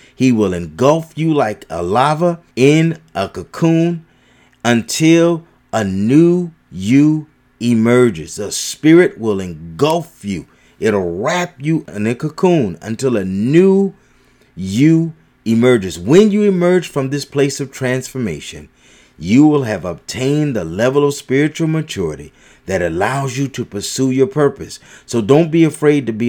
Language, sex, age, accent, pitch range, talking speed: English, male, 40-59, American, 115-165 Hz, 140 wpm